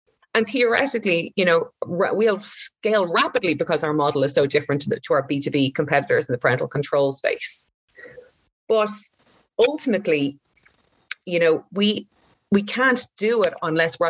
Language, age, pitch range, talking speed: English, 30-49, 160-215 Hz, 150 wpm